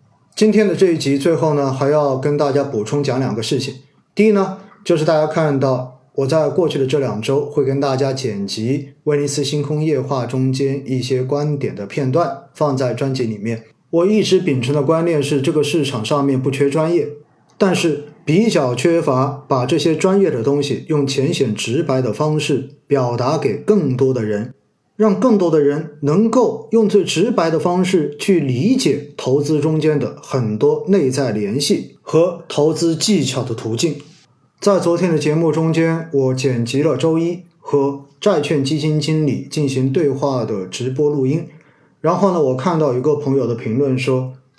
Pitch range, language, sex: 130-160 Hz, Chinese, male